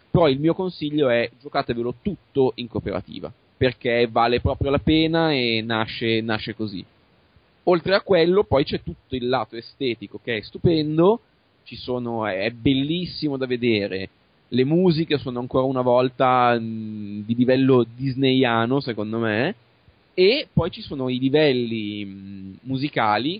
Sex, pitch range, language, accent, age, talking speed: male, 115-145 Hz, Italian, native, 20-39, 145 wpm